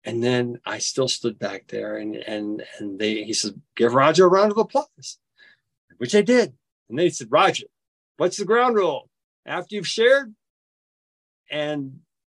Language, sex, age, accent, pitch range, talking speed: English, male, 50-69, American, 115-180 Hz, 165 wpm